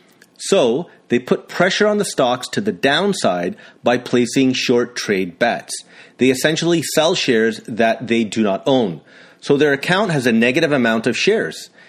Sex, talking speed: male, 165 wpm